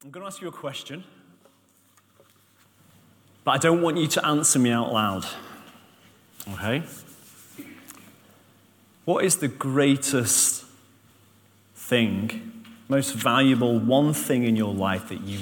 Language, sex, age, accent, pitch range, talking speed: English, male, 30-49, British, 100-130 Hz, 125 wpm